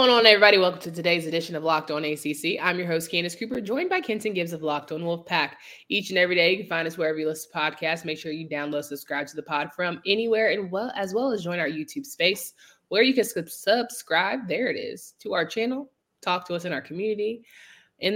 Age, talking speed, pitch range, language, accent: 20-39, 240 wpm, 160-215 Hz, English, American